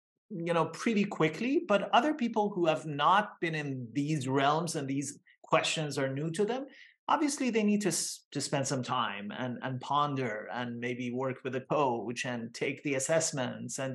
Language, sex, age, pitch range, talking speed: English, male, 30-49, 150-200 Hz, 190 wpm